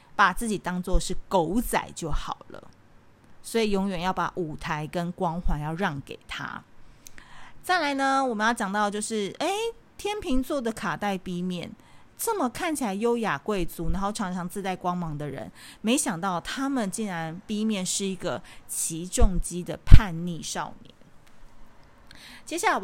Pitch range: 170-215 Hz